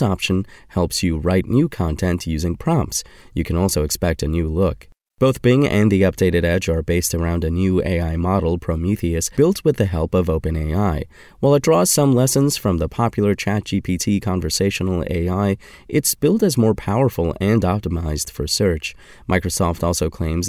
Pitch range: 85-115 Hz